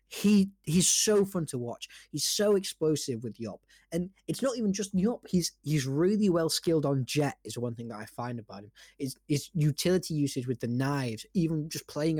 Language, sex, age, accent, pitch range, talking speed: English, male, 20-39, British, 115-160 Hz, 195 wpm